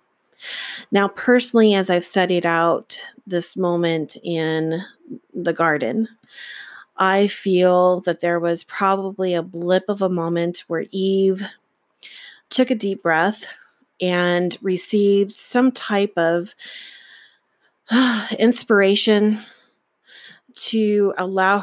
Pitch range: 175-210 Hz